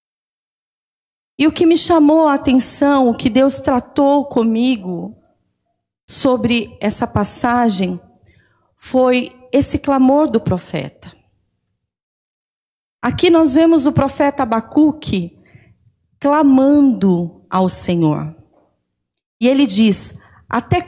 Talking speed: 95 wpm